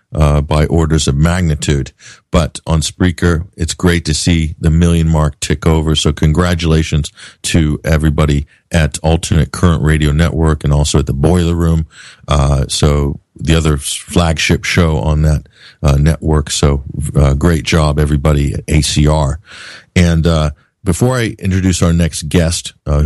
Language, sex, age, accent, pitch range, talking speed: English, male, 40-59, American, 75-85 Hz, 150 wpm